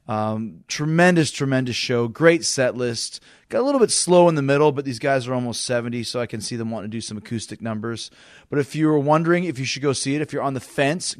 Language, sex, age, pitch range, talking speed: English, male, 30-49, 115-140 Hz, 255 wpm